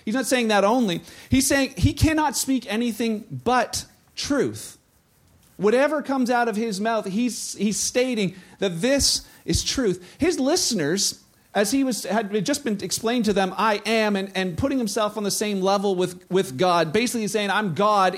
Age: 40-59